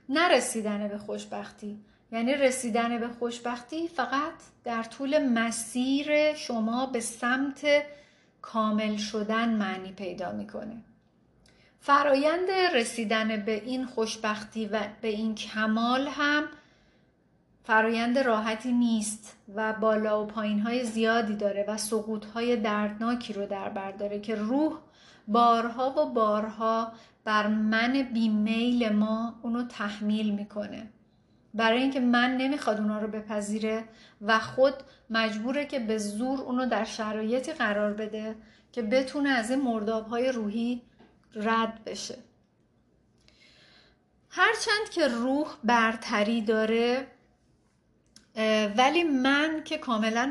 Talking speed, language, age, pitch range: 110 wpm, Persian, 40-59, 215-255 Hz